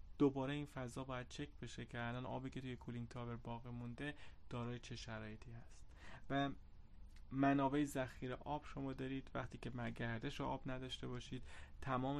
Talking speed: 160 wpm